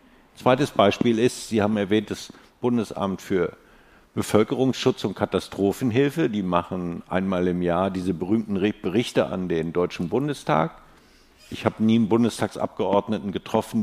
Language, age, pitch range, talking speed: German, 50-69, 100-120 Hz, 130 wpm